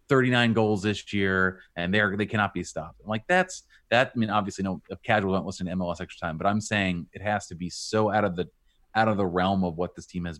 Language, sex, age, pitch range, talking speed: English, male, 30-49, 85-105 Hz, 255 wpm